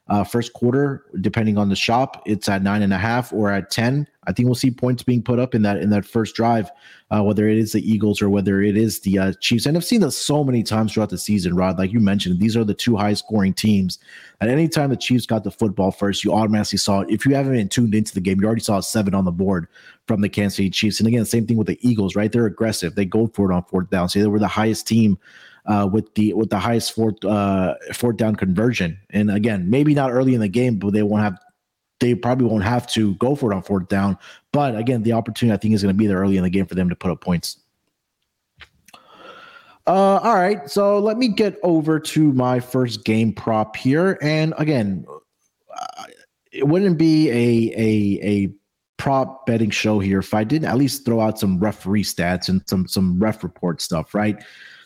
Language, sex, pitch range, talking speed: English, male, 100-120 Hz, 235 wpm